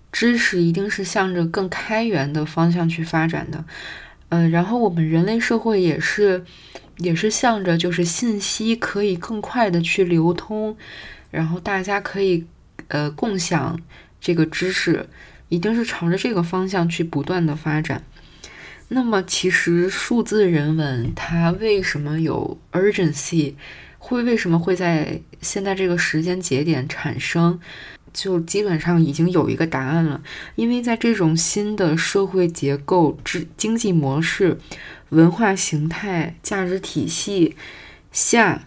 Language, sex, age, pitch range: Chinese, female, 20-39, 160-200 Hz